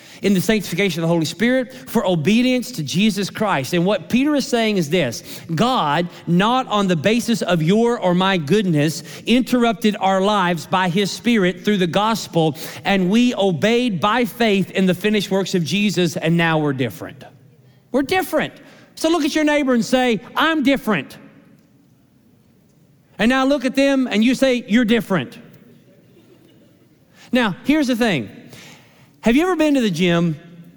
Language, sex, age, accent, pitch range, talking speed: English, male, 40-59, American, 165-220 Hz, 165 wpm